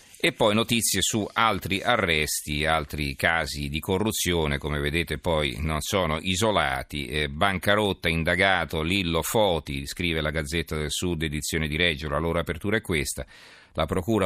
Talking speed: 145 wpm